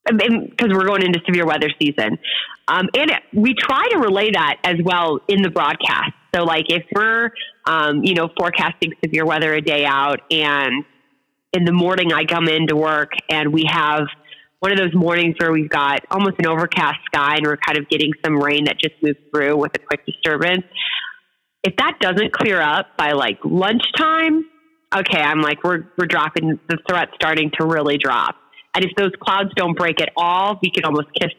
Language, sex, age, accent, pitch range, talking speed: English, female, 30-49, American, 150-185 Hz, 200 wpm